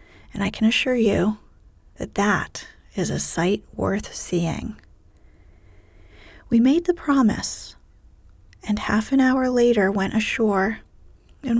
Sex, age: female, 40-59